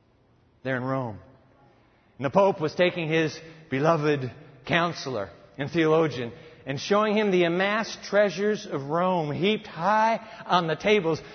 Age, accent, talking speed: 60-79, American, 135 wpm